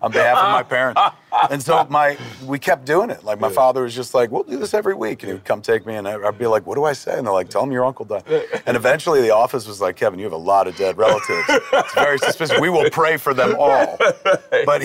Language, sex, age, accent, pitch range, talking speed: English, male, 40-59, American, 115-160 Hz, 280 wpm